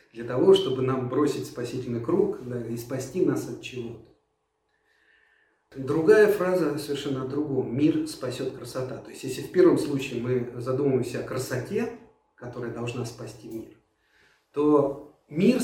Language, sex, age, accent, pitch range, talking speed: Russian, male, 40-59, native, 125-160 Hz, 140 wpm